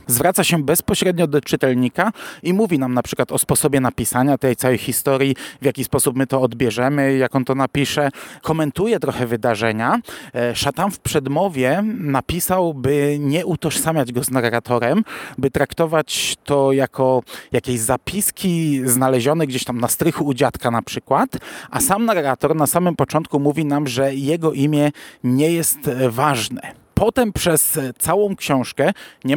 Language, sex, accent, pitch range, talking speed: Polish, male, native, 125-155 Hz, 150 wpm